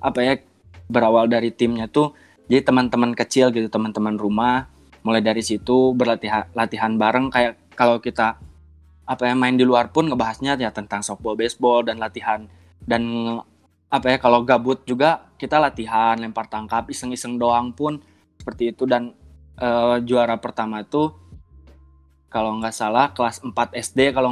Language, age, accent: Indonesian, 20-39, native